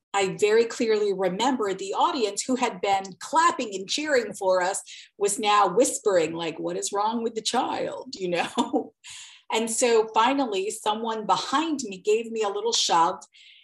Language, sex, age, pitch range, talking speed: English, female, 40-59, 185-245 Hz, 165 wpm